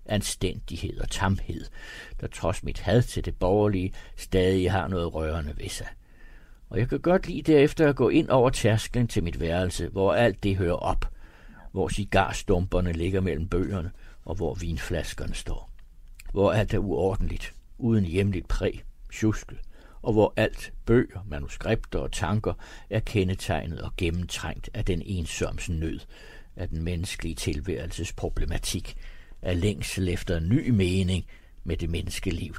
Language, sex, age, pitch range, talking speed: Danish, male, 60-79, 90-115 Hz, 145 wpm